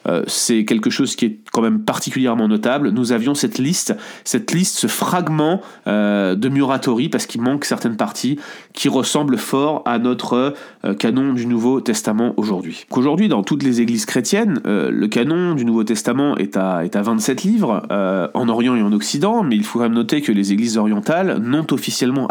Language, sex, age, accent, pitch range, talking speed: French, male, 30-49, French, 115-150 Hz, 195 wpm